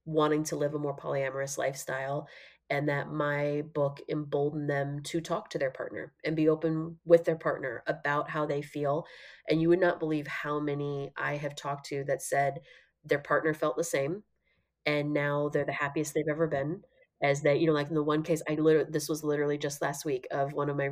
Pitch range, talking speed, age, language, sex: 145-160 Hz, 215 wpm, 30-49, English, female